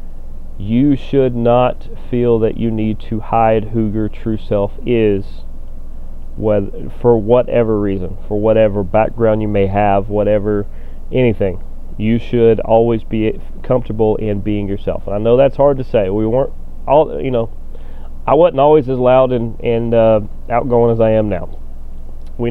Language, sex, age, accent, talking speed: English, male, 30-49, American, 155 wpm